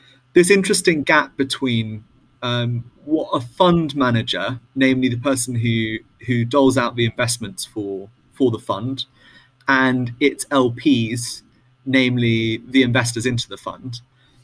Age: 30-49